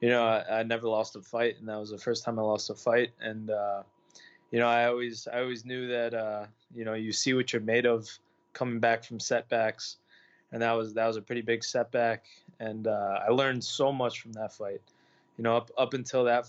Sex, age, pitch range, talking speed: male, 20-39, 110-125 Hz, 235 wpm